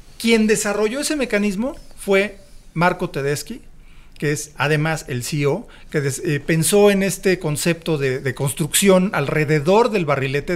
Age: 40-59